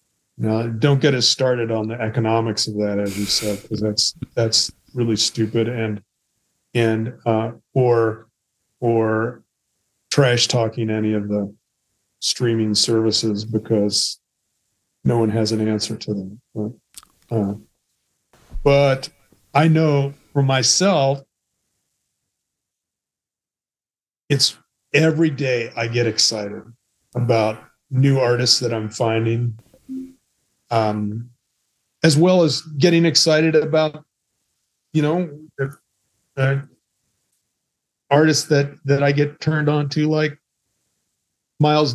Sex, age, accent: male, 40-59, American